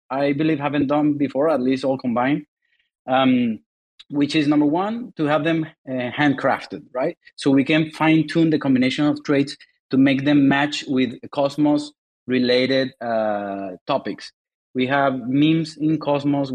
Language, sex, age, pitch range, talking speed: English, male, 30-49, 130-155 Hz, 155 wpm